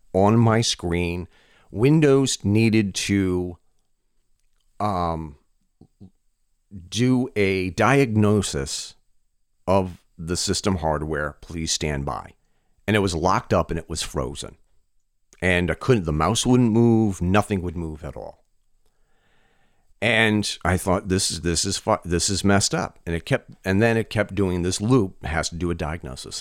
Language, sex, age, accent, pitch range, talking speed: English, male, 40-59, American, 85-110 Hz, 150 wpm